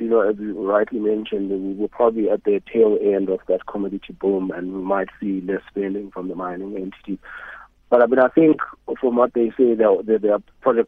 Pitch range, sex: 95-105 Hz, male